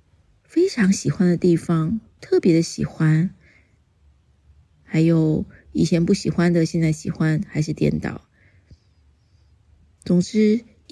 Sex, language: female, Chinese